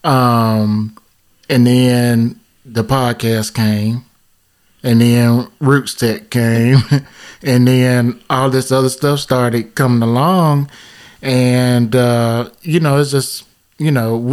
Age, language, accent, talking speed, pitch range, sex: 20-39, English, American, 115 wpm, 115-135 Hz, male